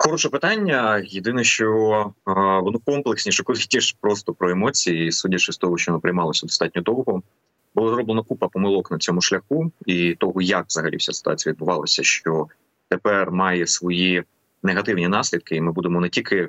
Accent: native